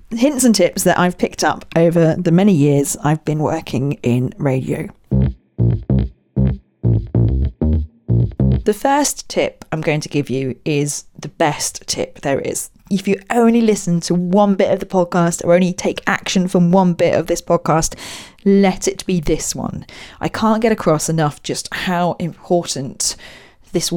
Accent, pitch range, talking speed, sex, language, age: British, 145-180 Hz, 160 wpm, female, English, 40-59